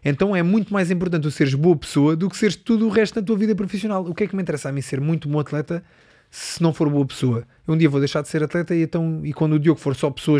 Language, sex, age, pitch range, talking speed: Portuguese, male, 20-39, 135-165 Hz, 300 wpm